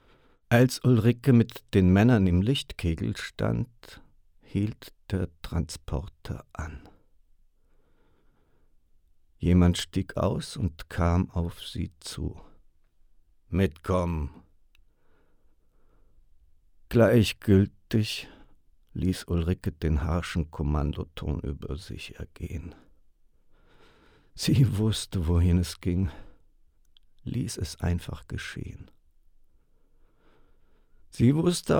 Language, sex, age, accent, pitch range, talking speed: German, male, 60-79, German, 80-105 Hz, 75 wpm